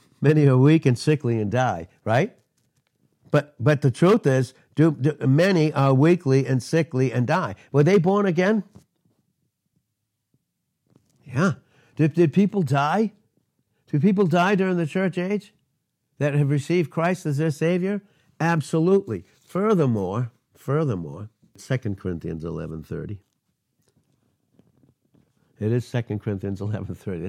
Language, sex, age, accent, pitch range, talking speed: English, male, 60-79, American, 120-160 Hz, 125 wpm